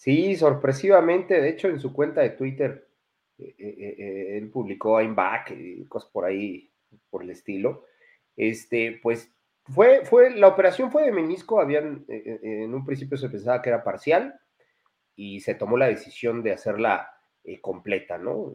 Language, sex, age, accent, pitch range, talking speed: Spanish, male, 40-59, Mexican, 115-160 Hz, 160 wpm